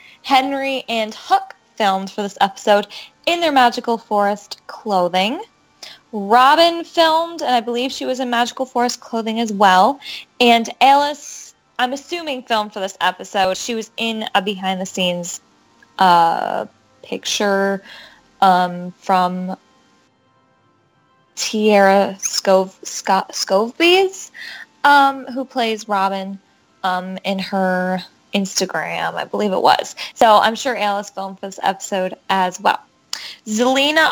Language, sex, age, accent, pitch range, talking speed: English, female, 10-29, American, 195-265 Hz, 115 wpm